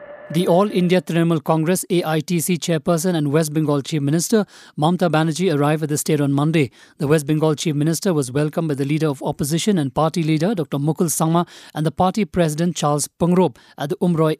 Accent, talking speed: Indian, 190 wpm